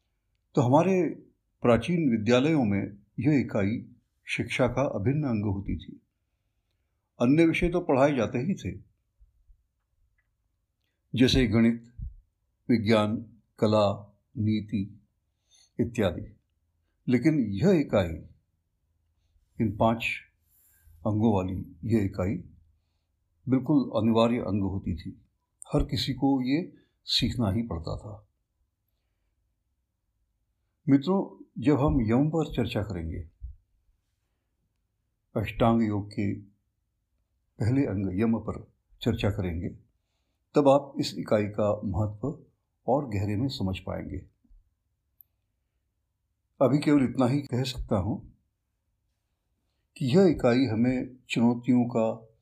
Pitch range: 90-120 Hz